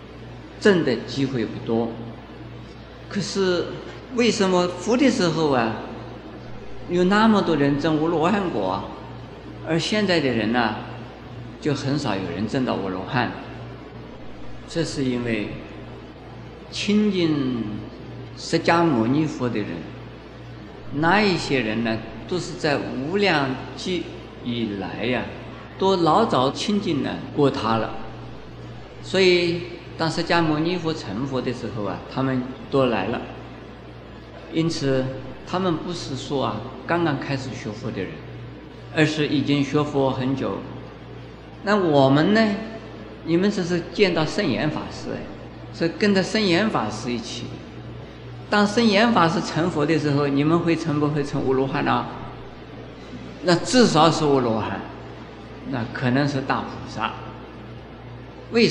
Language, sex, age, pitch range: Chinese, male, 50-69, 120-170 Hz